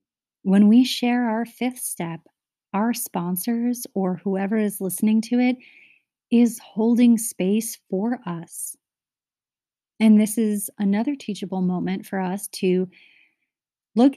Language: English